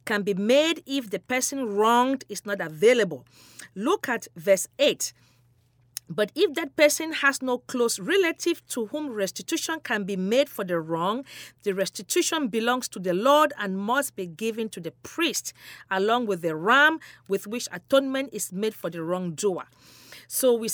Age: 40-59